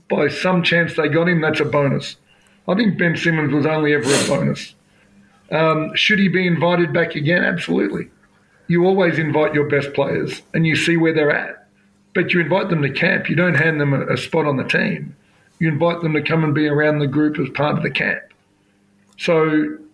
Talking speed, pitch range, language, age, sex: 210 wpm, 150-175 Hz, English, 50-69, male